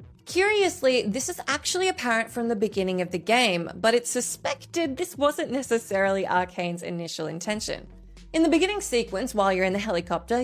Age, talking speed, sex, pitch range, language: 20-39, 165 wpm, female, 185-275 Hz, English